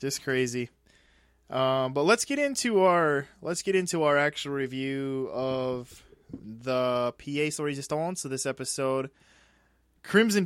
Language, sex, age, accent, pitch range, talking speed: English, male, 20-39, American, 120-150 Hz, 140 wpm